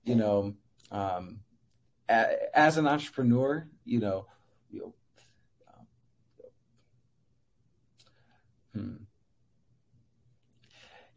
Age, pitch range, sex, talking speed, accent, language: 30-49, 110-130 Hz, male, 55 wpm, American, English